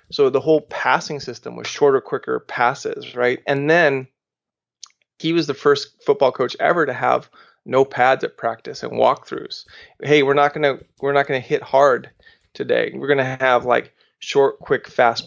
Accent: American